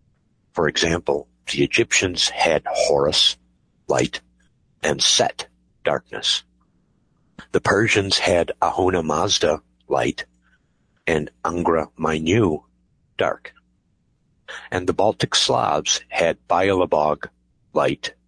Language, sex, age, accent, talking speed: English, male, 60-79, American, 90 wpm